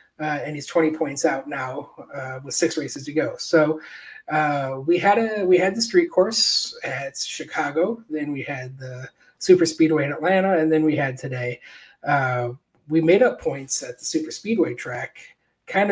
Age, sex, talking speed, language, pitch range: 30-49, male, 185 wpm, English, 135-165 Hz